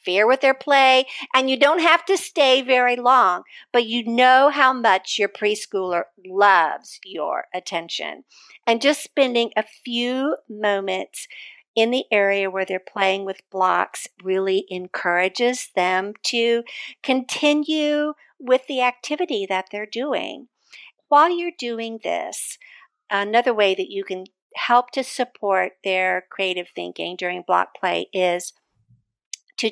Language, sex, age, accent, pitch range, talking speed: English, female, 50-69, American, 195-265 Hz, 135 wpm